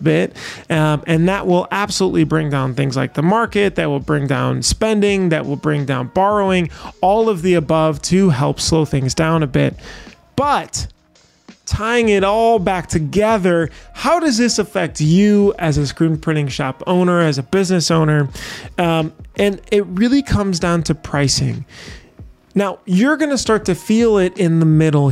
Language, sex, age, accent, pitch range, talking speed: English, male, 30-49, American, 150-195 Hz, 170 wpm